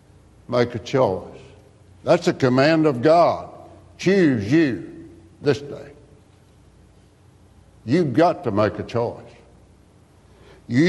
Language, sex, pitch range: English, male, 115-160 Hz